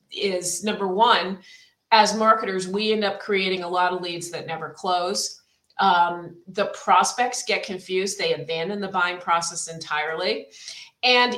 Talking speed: 150 wpm